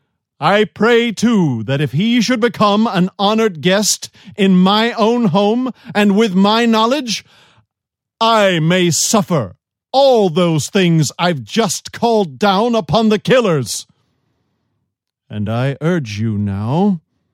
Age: 50-69